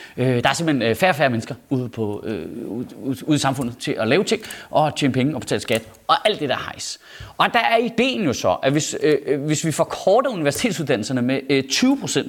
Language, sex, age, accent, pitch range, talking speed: Danish, male, 30-49, native, 145-225 Hz, 210 wpm